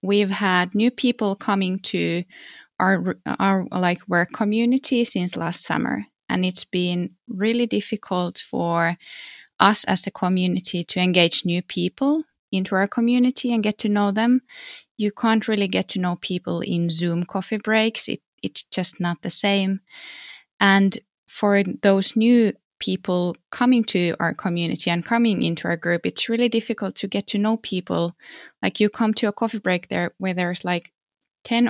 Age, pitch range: 20-39, 180-220 Hz